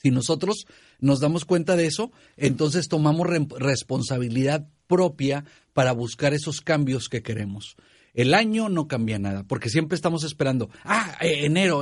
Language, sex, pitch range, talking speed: Spanish, male, 130-165 Hz, 140 wpm